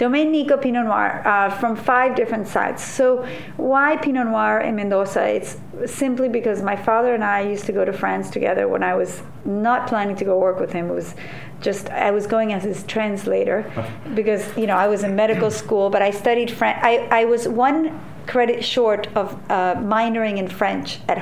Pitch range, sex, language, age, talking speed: 200-240 Hz, female, English, 50-69, 200 wpm